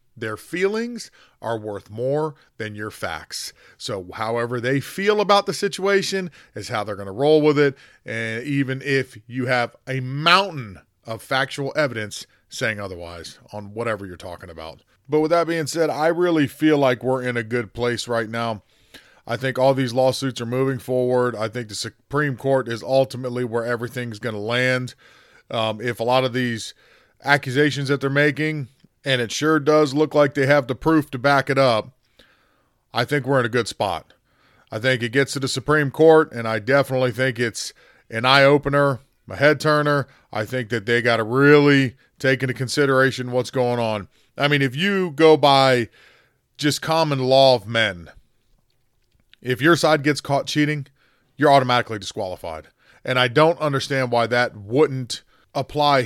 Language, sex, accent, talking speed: English, male, American, 180 wpm